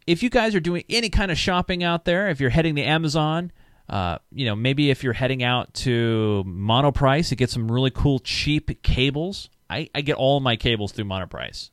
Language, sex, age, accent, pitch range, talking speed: English, male, 30-49, American, 115-165 Hz, 215 wpm